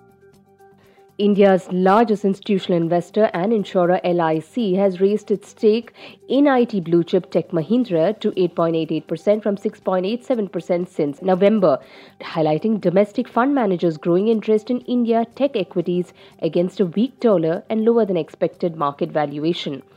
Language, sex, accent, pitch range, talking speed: English, female, Indian, 170-215 Hz, 130 wpm